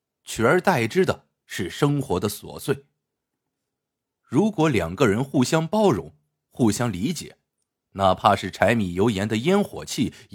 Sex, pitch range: male, 100-160 Hz